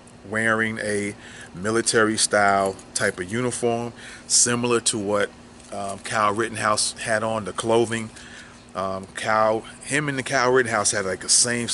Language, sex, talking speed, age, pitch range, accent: English, male, 145 wpm, 30-49, 95-110 Hz, American